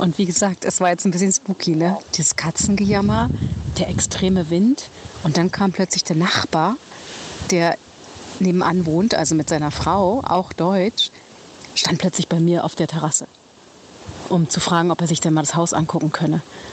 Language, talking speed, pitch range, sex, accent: German, 175 wpm, 160-200 Hz, female, German